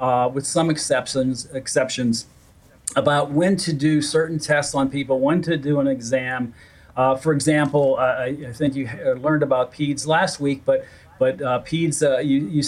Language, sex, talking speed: English, male, 175 wpm